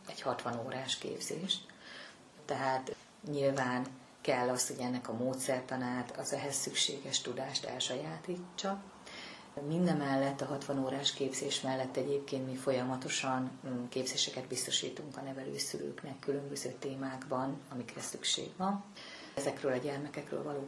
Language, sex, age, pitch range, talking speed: Hungarian, female, 30-49, 125-140 Hz, 115 wpm